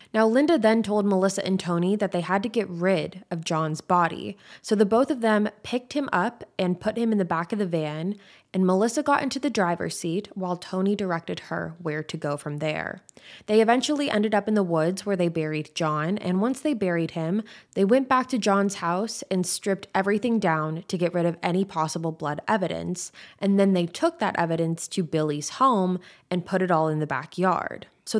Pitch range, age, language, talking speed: 170-220 Hz, 20-39, English, 215 wpm